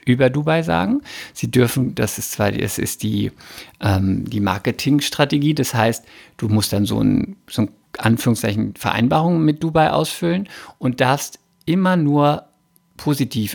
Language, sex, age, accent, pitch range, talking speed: German, male, 50-69, German, 115-150 Hz, 145 wpm